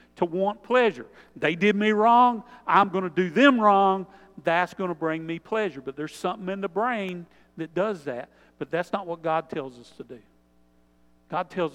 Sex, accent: male, American